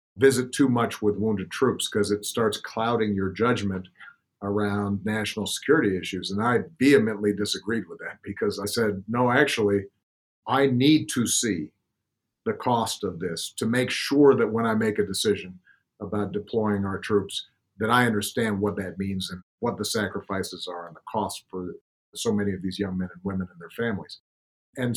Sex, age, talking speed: male, 50-69, 180 wpm